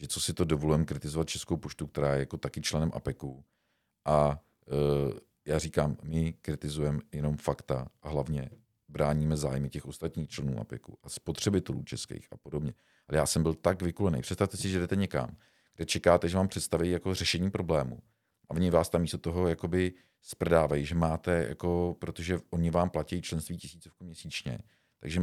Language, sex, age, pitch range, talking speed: Czech, male, 50-69, 80-100 Hz, 175 wpm